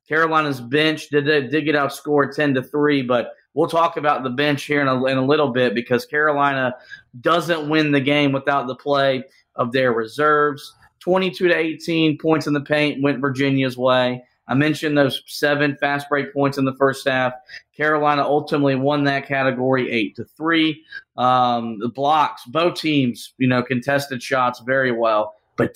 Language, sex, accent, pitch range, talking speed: English, male, American, 130-150 Hz, 180 wpm